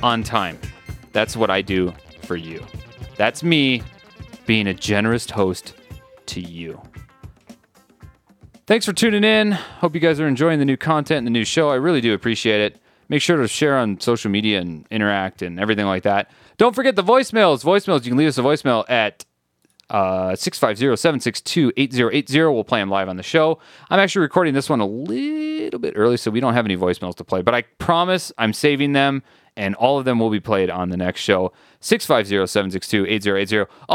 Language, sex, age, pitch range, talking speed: English, male, 30-49, 100-165 Hz, 185 wpm